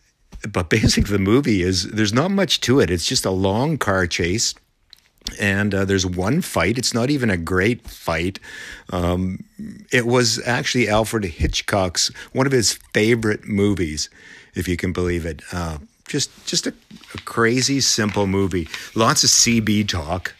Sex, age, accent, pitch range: male, 50-69, American, 90-105 Hz